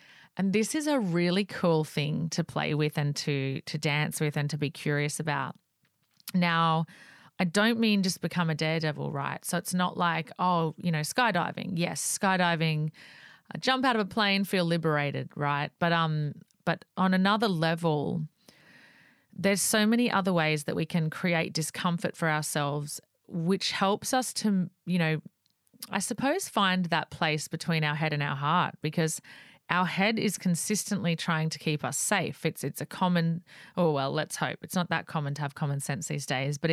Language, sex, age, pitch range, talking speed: English, female, 30-49, 155-190 Hz, 180 wpm